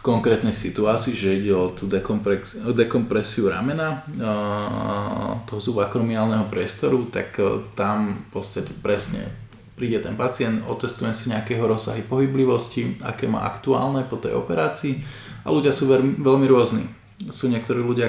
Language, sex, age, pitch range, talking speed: Slovak, male, 20-39, 105-125 Hz, 125 wpm